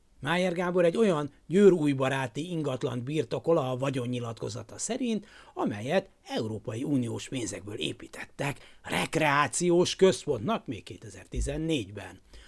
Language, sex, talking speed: Hungarian, male, 85 wpm